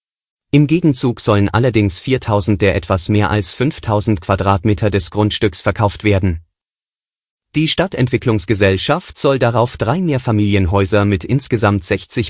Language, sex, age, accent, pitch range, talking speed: German, male, 30-49, German, 100-120 Hz, 115 wpm